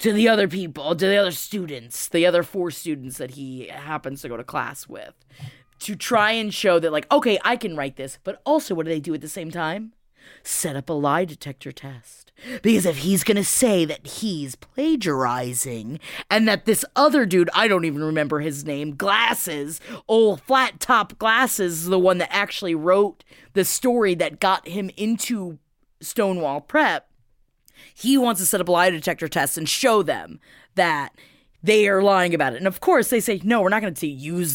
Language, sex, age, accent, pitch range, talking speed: English, female, 20-39, American, 160-240 Hz, 200 wpm